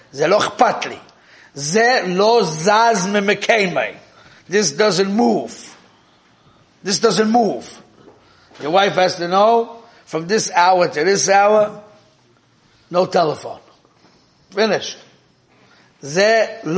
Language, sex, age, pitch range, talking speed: English, male, 50-69, 145-205 Hz, 70 wpm